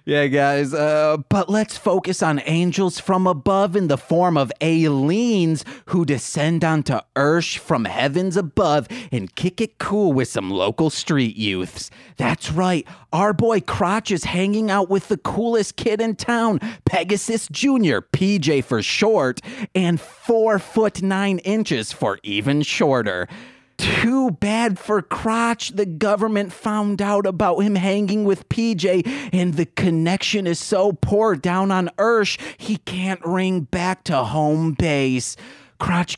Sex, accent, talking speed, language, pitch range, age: male, American, 150 wpm, English, 160-205 Hz, 30-49